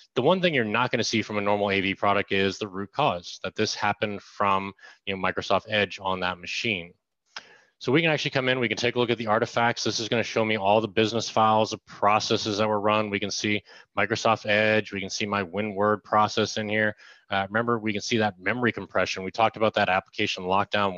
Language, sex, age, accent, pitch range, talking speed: English, male, 20-39, American, 100-115 Hz, 235 wpm